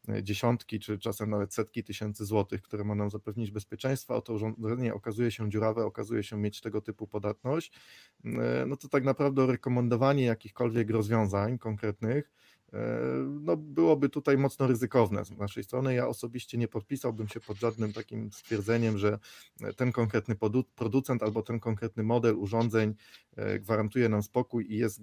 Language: Polish